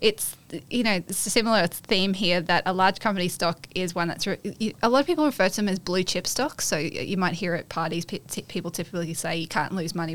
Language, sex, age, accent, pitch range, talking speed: English, female, 20-39, Australian, 160-190 Hz, 265 wpm